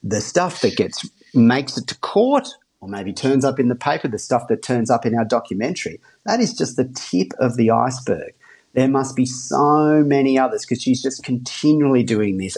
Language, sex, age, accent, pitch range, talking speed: English, male, 30-49, Australian, 115-140 Hz, 205 wpm